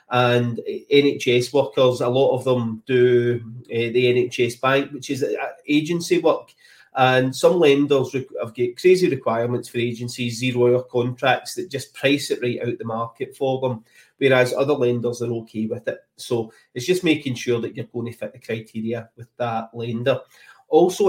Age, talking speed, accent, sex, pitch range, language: 30-49, 175 wpm, British, male, 120-140 Hz, English